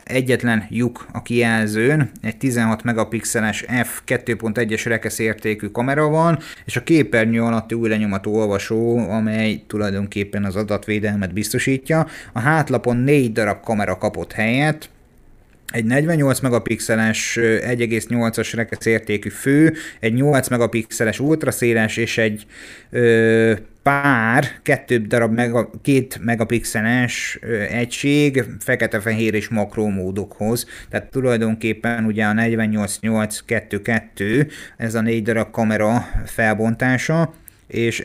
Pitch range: 110-125 Hz